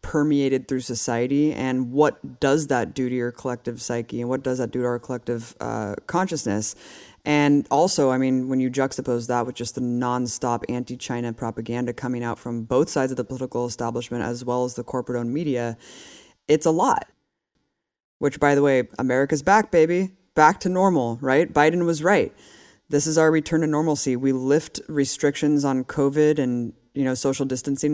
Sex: female